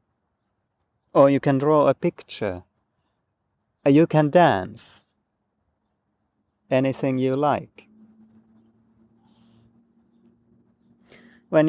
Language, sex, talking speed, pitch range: Finnish, male, 65 wpm, 115-155 Hz